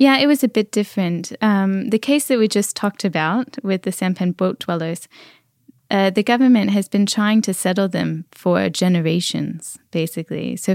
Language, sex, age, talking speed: Danish, female, 10-29, 180 wpm